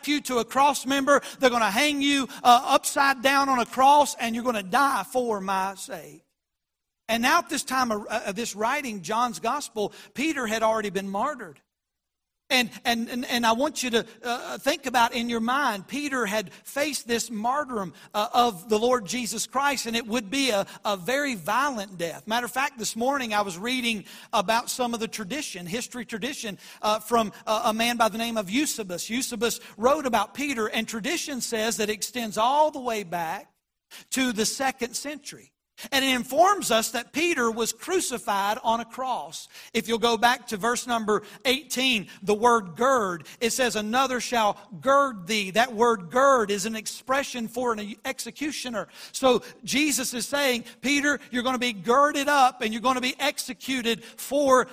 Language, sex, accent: English, male, American